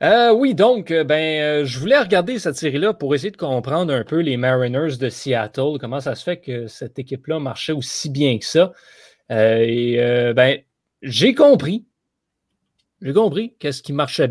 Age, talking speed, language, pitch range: 30-49, 175 wpm, French, 135-185 Hz